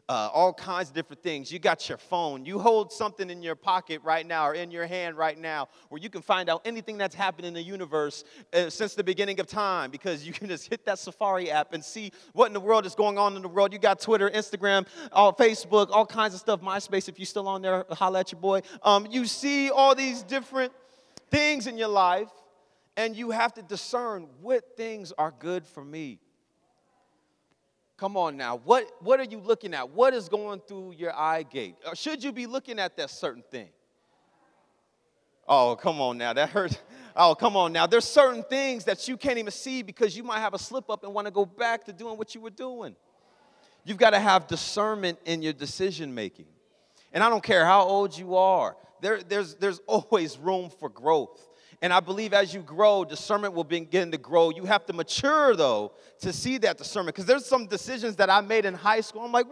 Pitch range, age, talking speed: 185-250 Hz, 30-49, 220 wpm